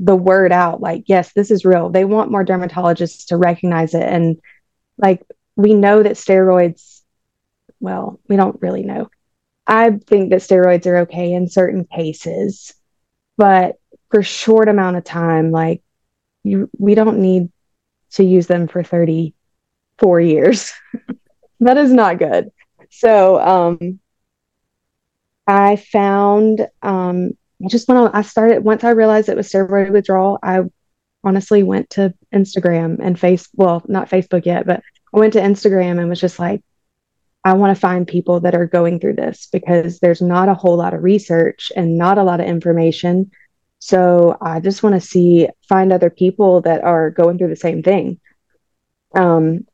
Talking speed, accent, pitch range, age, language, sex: 165 wpm, American, 175-200 Hz, 20-39, English, female